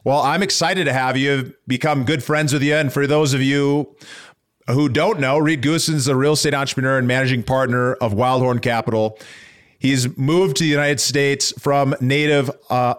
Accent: American